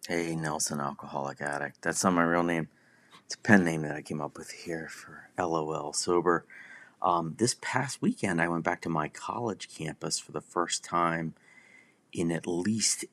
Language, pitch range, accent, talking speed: English, 80-95 Hz, American, 185 wpm